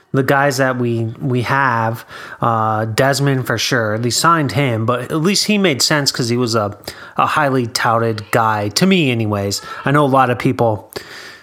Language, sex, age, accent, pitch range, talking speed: English, male, 30-49, American, 110-140 Hz, 190 wpm